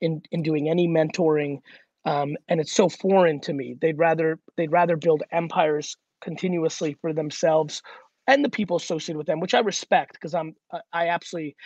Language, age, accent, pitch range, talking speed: English, 30-49, American, 155-180 Hz, 175 wpm